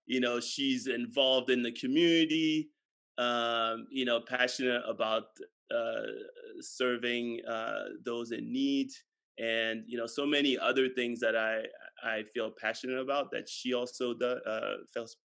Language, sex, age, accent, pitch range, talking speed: English, male, 20-39, American, 115-140 Hz, 145 wpm